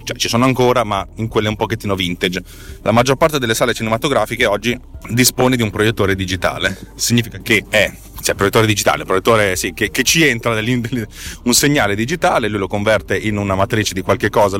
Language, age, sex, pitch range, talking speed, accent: Italian, 30-49, male, 100-125 Hz, 195 wpm, native